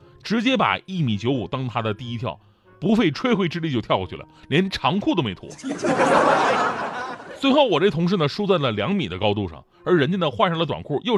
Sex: male